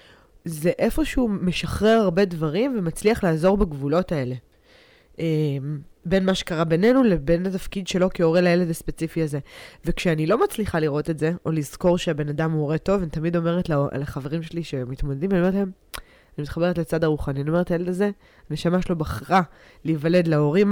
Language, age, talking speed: Hebrew, 20-39, 155 wpm